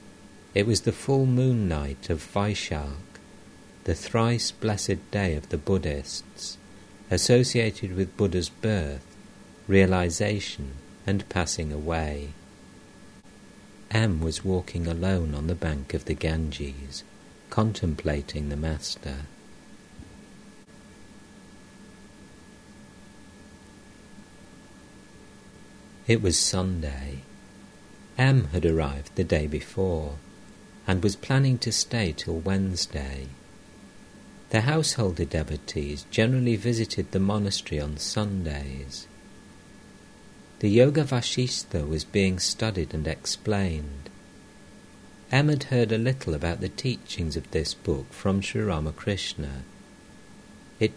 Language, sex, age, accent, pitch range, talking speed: English, male, 50-69, British, 75-105 Hz, 100 wpm